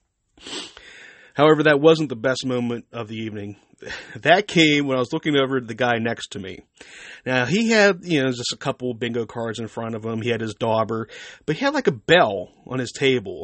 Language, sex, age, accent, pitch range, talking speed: English, male, 30-49, American, 115-140 Hz, 225 wpm